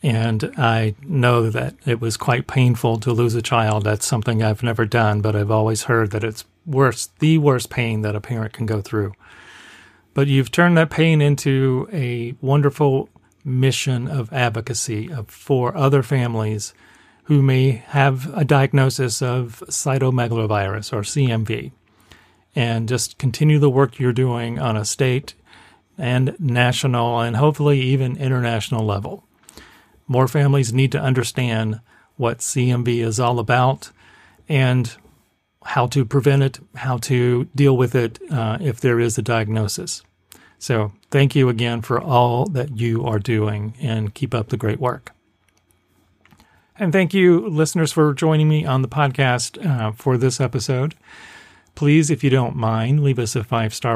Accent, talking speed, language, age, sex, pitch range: American, 155 wpm, English, 40-59, male, 115-135 Hz